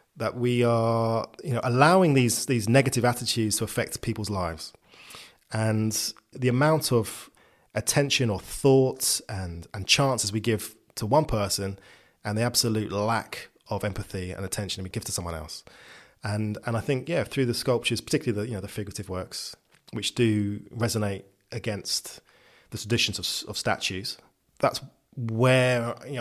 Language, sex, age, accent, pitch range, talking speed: English, male, 20-39, British, 105-135 Hz, 160 wpm